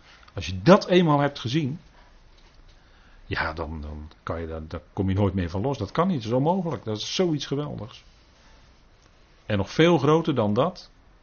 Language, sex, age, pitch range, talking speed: Dutch, male, 40-59, 100-155 Hz, 185 wpm